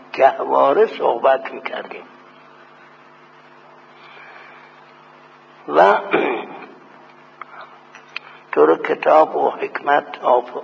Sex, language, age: male, Persian, 60-79